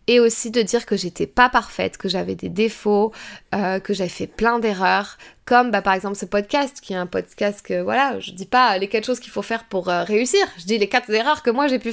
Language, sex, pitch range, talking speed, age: French, female, 195-225 Hz, 255 wpm, 20-39